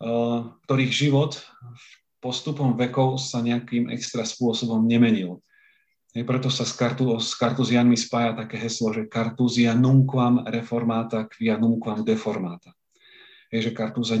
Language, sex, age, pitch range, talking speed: Slovak, male, 40-59, 115-135 Hz, 115 wpm